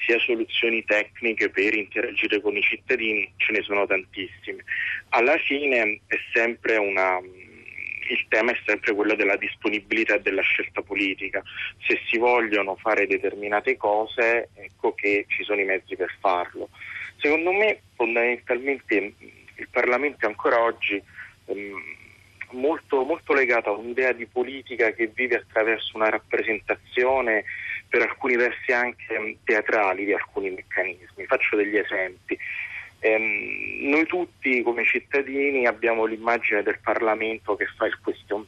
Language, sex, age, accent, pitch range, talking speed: Italian, male, 30-49, native, 105-130 Hz, 135 wpm